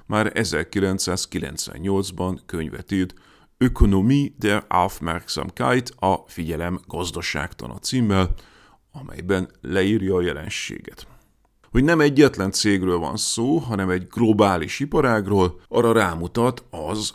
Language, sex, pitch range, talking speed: Hungarian, male, 90-125 Hz, 100 wpm